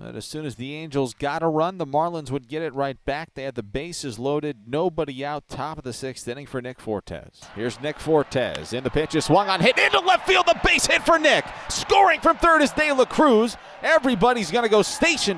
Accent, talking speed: American, 240 wpm